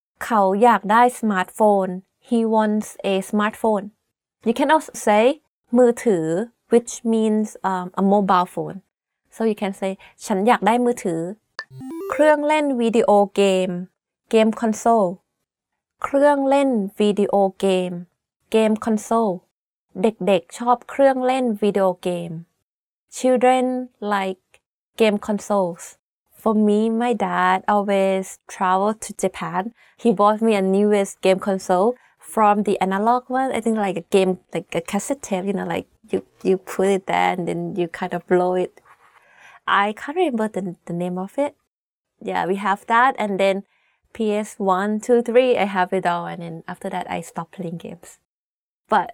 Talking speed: 135 wpm